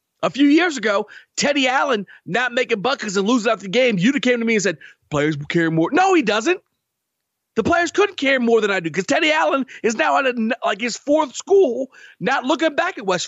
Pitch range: 205-300 Hz